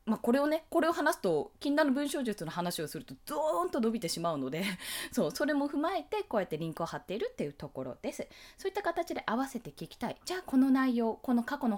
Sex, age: female, 20-39